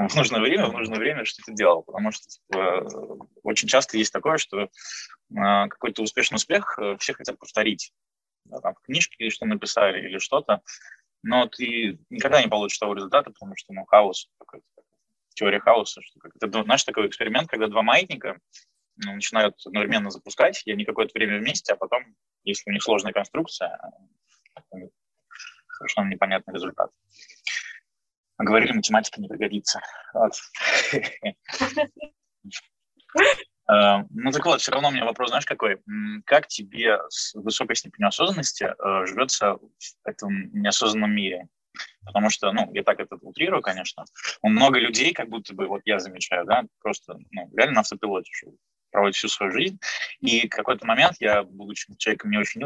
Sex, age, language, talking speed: male, 20-39, Russian, 150 wpm